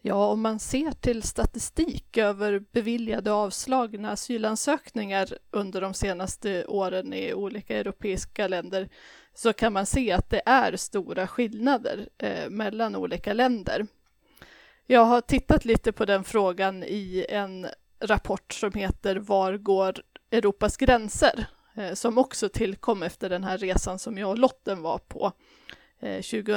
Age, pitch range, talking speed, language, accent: 20-39, 195-235 Hz, 140 wpm, Swedish, native